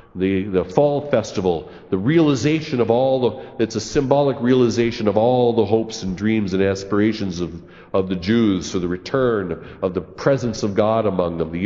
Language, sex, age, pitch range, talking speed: English, male, 40-59, 95-130 Hz, 185 wpm